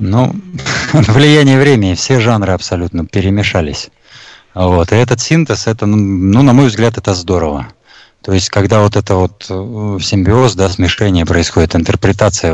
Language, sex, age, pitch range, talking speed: Russian, male, 20-39, 95-115 Hz, 140 wpm